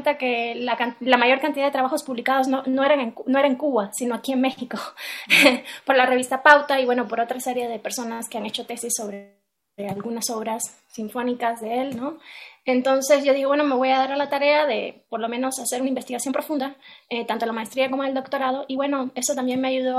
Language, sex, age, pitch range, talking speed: Spanish, female, 20-39, 235-265 Hz, 220 wpm